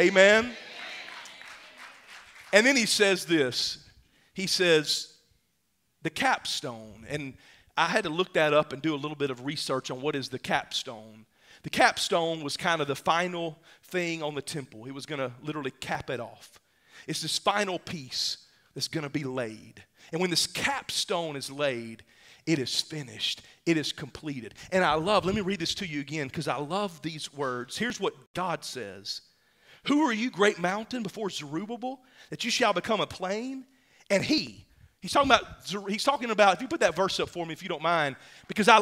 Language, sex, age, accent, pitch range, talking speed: English, male, 40-59, American, 150-215 Hz, 190 wpm